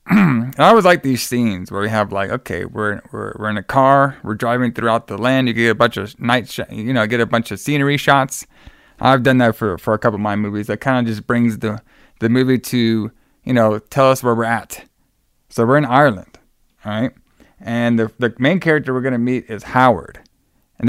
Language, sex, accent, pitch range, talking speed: English, male, American, 115-140 Hz, 230 wpm